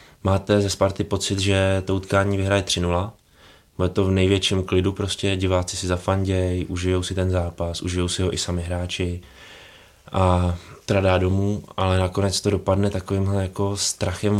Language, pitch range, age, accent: Czech, 95-110 Hz, 20-39, native